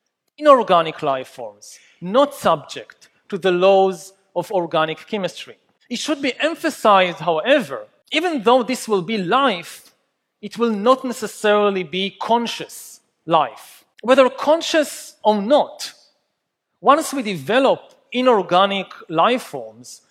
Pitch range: 185-250 Hz